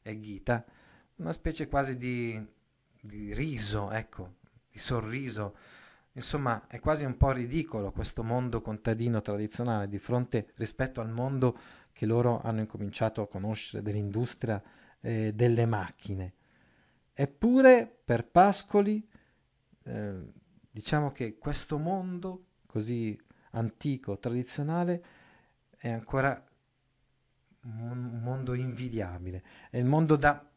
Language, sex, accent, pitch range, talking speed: Italian, male, native, 110-140 Hz, 110 wpm